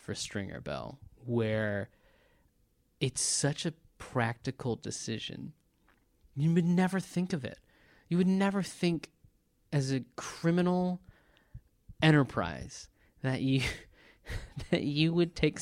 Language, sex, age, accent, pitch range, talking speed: English, male, 20-39, American, 115-175 Hz, 110 wpm